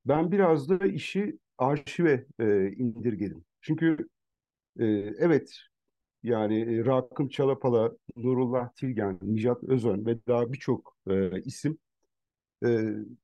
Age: 50-69